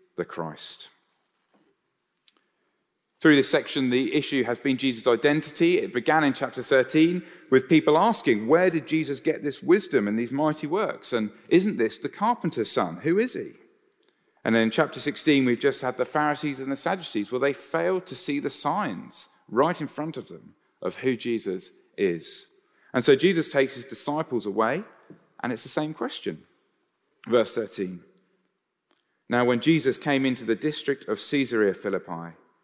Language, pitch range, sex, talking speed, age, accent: English, 125-175 Hz, male, 165 wpm, 40-59, British